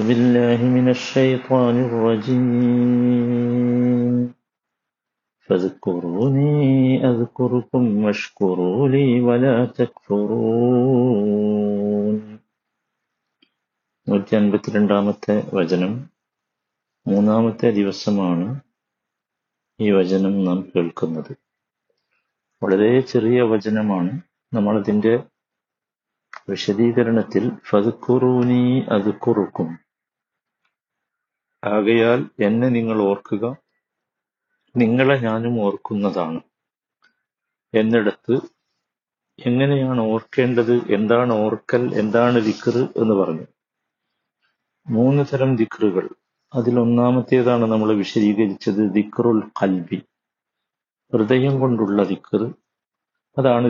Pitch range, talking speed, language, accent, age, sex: 105-125 Hz, 60 wpm, Malayalam, native, 50-69, male